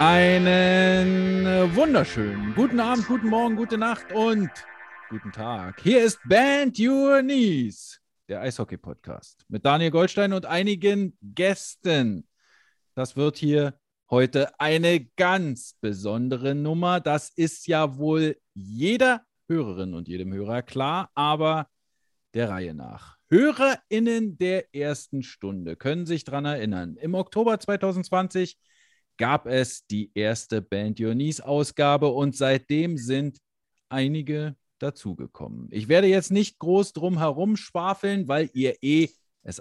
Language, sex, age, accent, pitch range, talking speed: English, male, 40-59, German, 120-190 Hz, 120 wpm